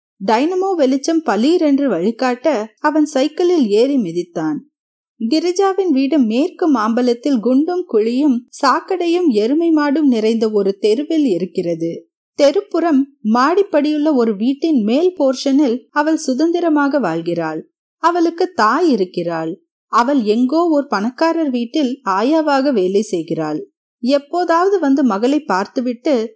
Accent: native